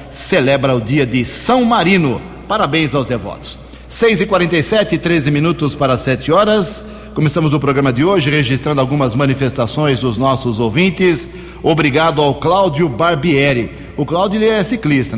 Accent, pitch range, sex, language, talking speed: Brazilian, 125-155 Hz, male, Portuguese, 140 wpm